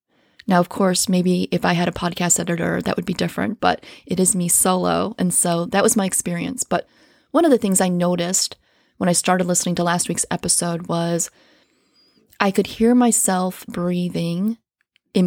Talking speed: 185 wpm